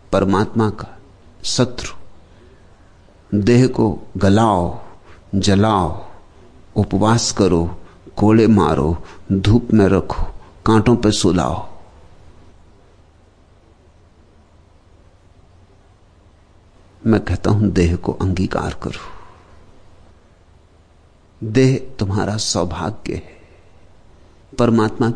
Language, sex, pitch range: Hindi, male, 85-145 Hz